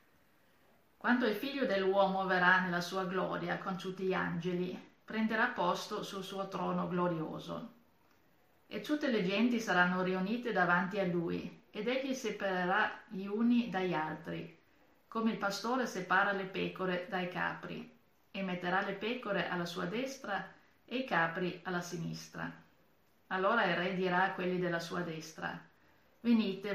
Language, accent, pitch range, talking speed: Italian, native, 180-215 Hz, 145 wpm